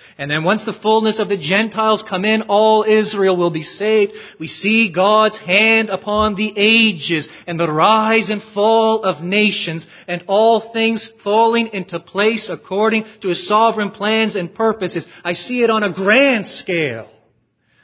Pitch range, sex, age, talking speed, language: 125-210 Hz, male, 30-49, 165 wpm, English